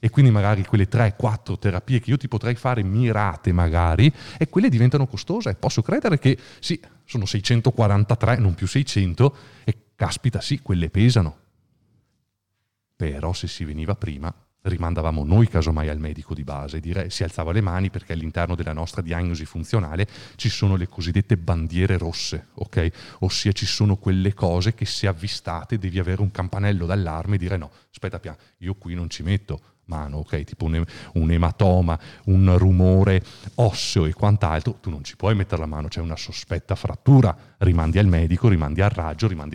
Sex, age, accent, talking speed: male, 30-49, native, 175 wpm